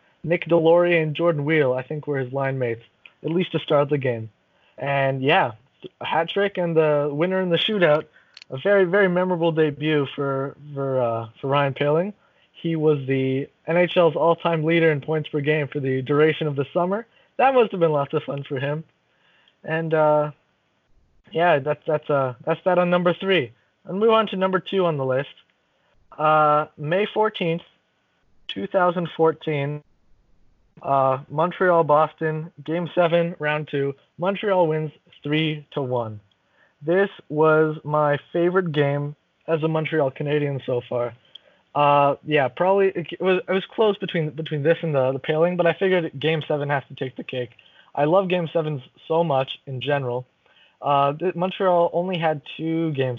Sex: male